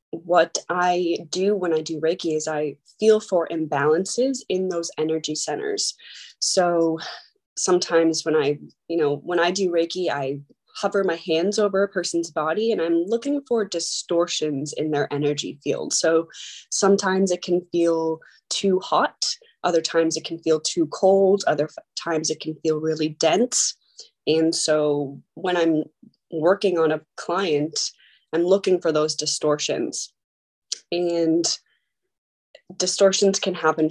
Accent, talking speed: American, 145 wpm